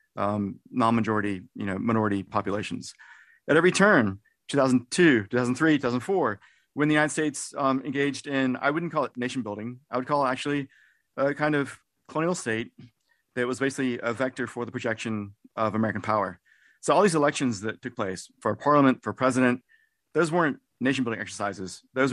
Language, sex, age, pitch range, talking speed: English, male, 30-49, 110-140 Hz, 170 wpm